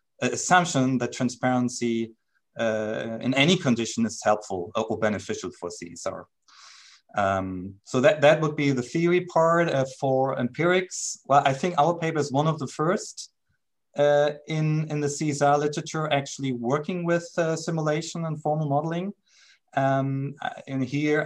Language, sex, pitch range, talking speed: English, male, 130-165 Hz, 145 wpm